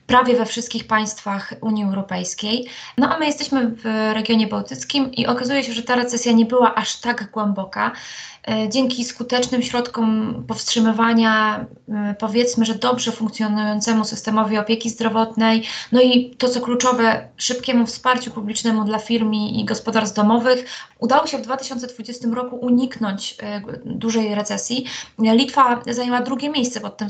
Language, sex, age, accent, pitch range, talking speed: Polish, female, 20-39, native, 220-250 Hz, 135 wpm